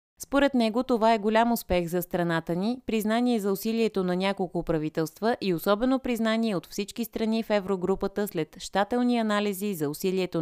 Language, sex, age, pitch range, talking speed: Bulgarian, female, 20-39, 165-220 Hz, 160 wpm